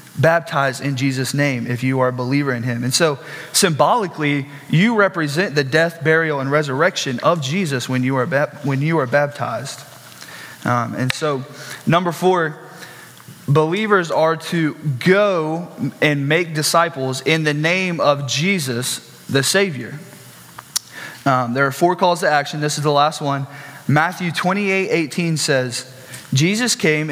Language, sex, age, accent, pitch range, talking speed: English, male, 20-39, American, 140-180 Hz, 155 wpm